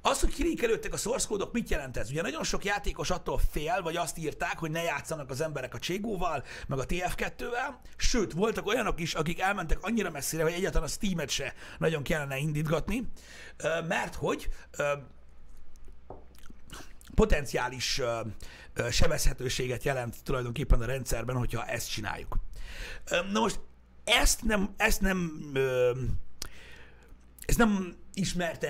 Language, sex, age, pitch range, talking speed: Hungarian, male, 60-79, 125-195 Hz, 130 wpm